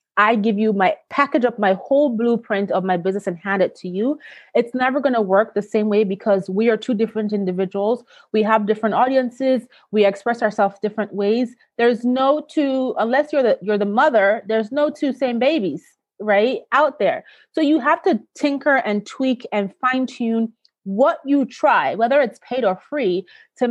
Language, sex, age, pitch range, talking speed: English, female, 30-49, 210-275 Hz, 190 wpm